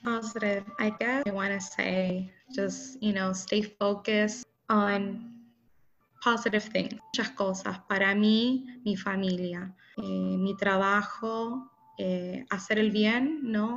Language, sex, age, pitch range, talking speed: English, female, 20-39, 200-230 Hz, 125 wpm